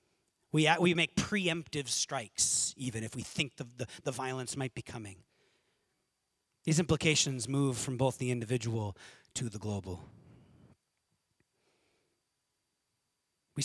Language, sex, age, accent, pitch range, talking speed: English, male, 30-49, American, 105-150 Hz, 115 wpm